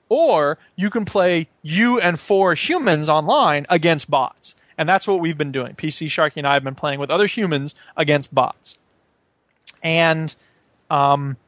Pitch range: 165-220 Hz